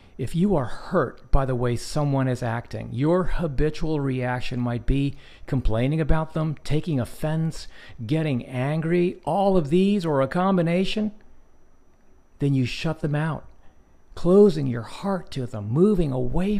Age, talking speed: 50-69, 145 wpm